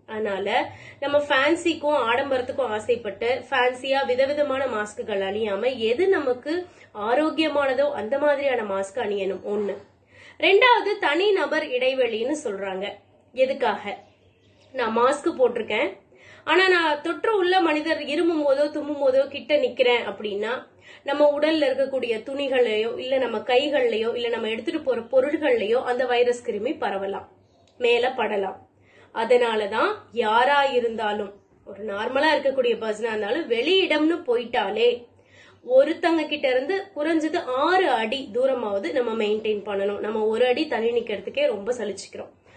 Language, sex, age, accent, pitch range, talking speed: Tamil, female, 20-39, native, 235-345 Hz, 115 wpm